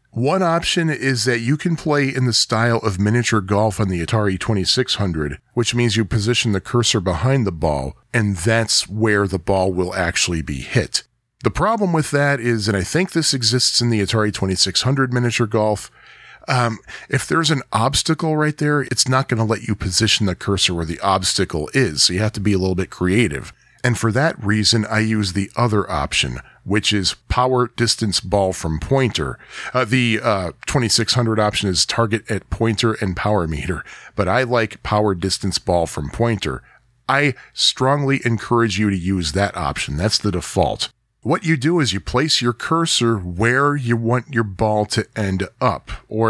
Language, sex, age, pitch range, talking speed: English, male, 40-59, 95-125 Hz, 185 wpm